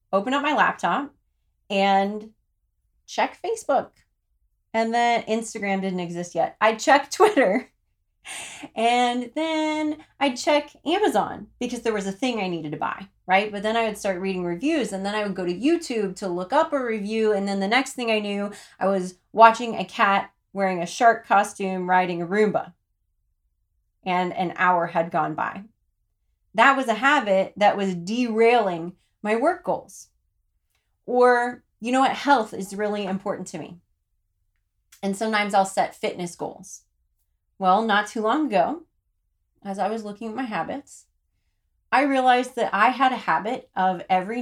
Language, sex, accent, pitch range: English, female, American, 180-245 Hz